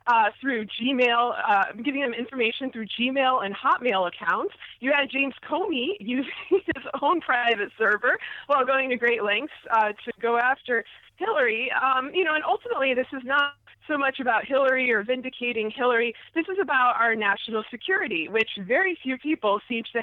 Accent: American